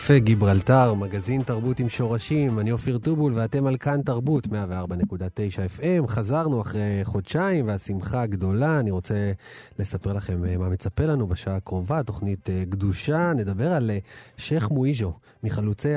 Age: 30-49